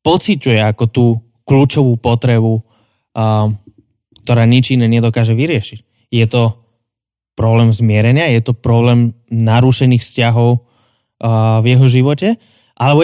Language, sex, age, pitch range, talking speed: Slovak, male, 20-39, 115-130 Hz, 105 wpm